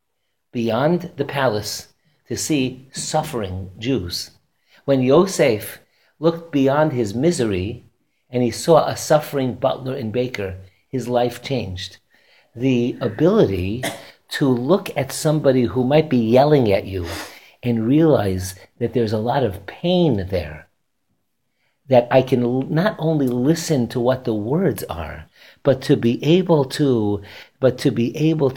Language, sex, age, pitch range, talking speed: English, male, 50-69, 115-155 Hz, 135 wpm